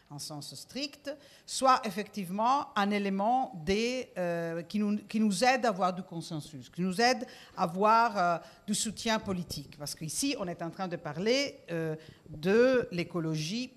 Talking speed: 165 wpm